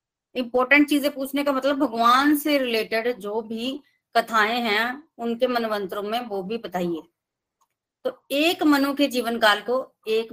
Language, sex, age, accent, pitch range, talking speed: Hindi, female, 30-49, native, 225-280 Hz, 150 wpm